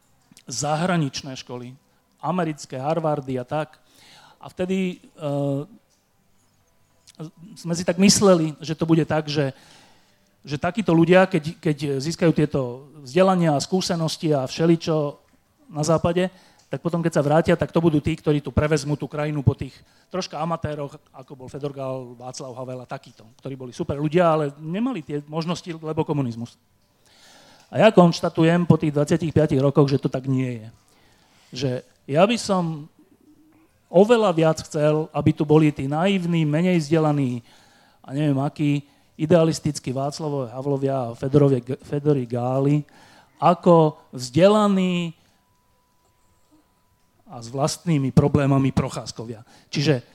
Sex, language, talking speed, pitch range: male, Slovak, 135 wpm, 140-170 Hz